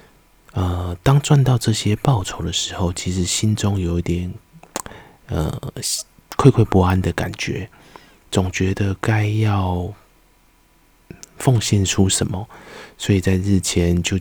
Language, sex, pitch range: Chinese, male, 85-105 Hz